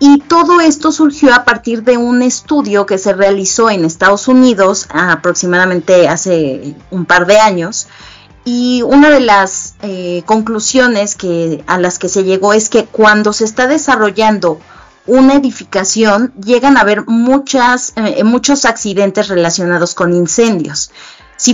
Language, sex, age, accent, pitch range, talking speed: Spanish, female, 30-49, Mexican, 185-245 Hz, 140 wpm